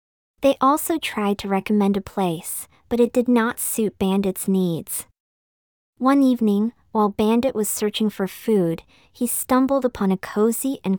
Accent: American